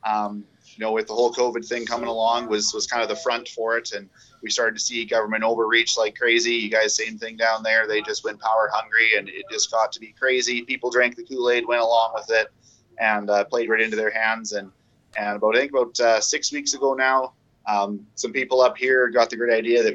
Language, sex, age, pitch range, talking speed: English, male, 30-49, 110-130 Hz, 245 wpm